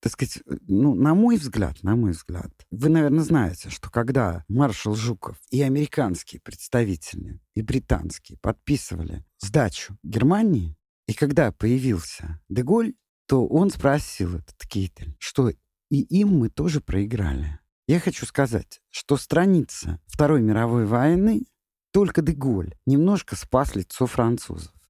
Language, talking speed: Russian, 130 wpm